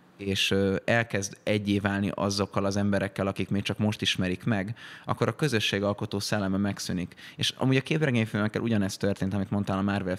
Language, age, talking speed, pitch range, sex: Hungarian, 20-39, 165 wpm, 95-110 Hz, male